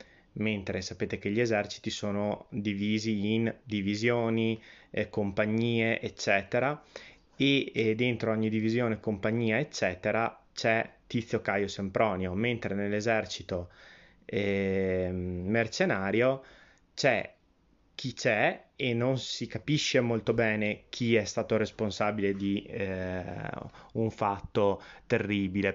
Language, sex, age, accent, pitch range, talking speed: Italian, male, 20-39, native, 100-120 Hz, 105 wpm